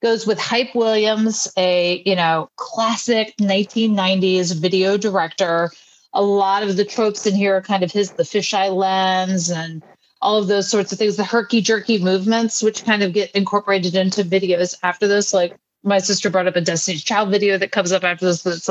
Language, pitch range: English, 190-225 Hz